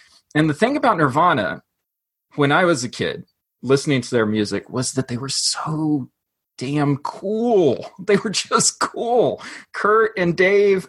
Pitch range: 120-165 Hz